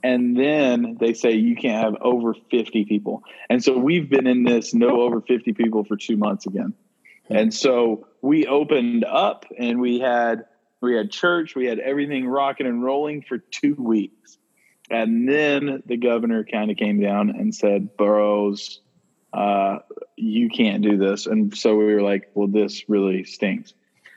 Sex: male